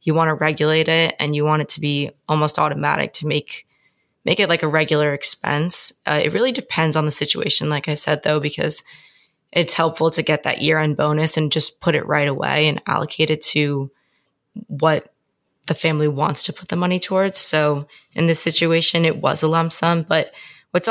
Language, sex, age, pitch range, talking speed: English, female, 20-39, 150-170 Hz, 200 wpm